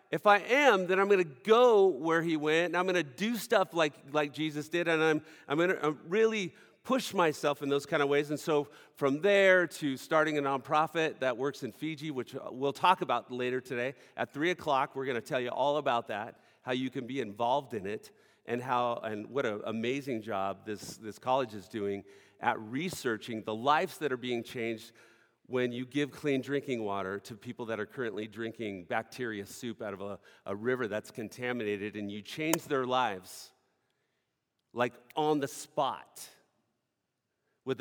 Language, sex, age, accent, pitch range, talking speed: English, male, 40-59, American, 115-160 Hz, 190 wpm